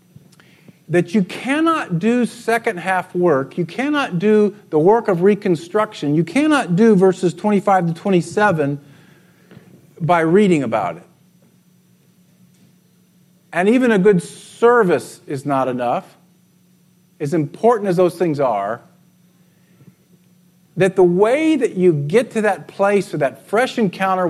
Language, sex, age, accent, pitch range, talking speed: English, male, 50-69, American, 150-180 Hz, 125 wpm